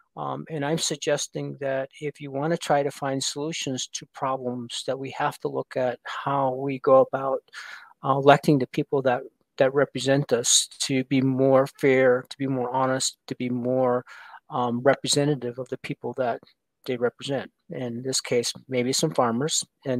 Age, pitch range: 50-69, 125-145 Hz